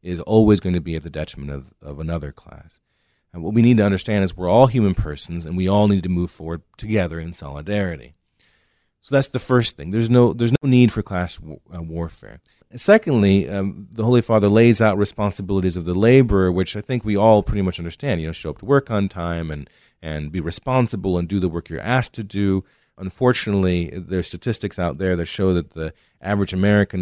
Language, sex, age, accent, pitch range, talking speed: English, male, 30-49, American, 85-110 Hz, 220 wpm